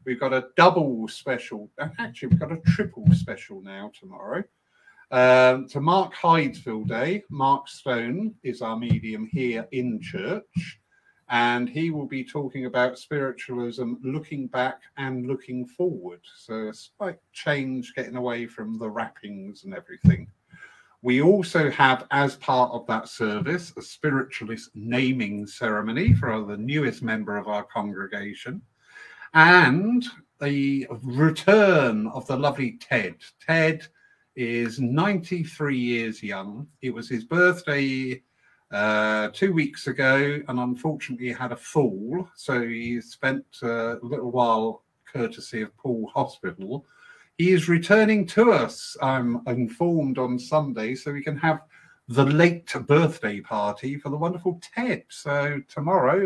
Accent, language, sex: British, English, male